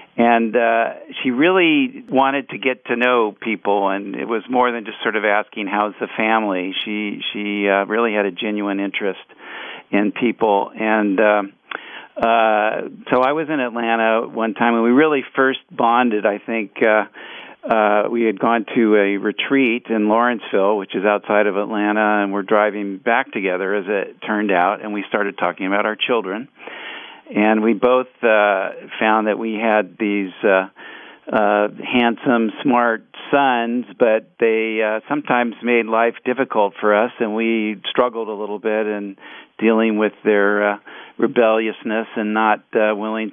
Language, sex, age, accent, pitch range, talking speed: English, male, 50-69, American, 105-120 Hz, 165 wpm